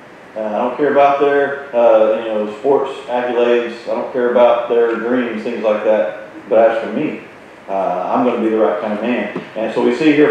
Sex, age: male, 40-59